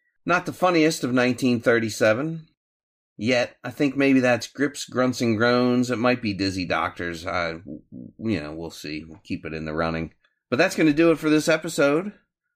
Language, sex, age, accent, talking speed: English, male, 30-49, American, 180 wpm